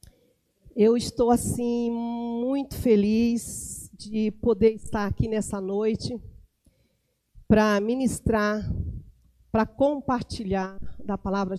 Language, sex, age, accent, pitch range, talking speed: Portuguese, female, 50-69, Brazilian, 195-230 Hz, 90 wpm